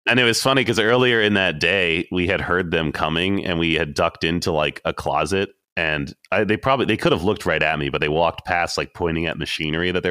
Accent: American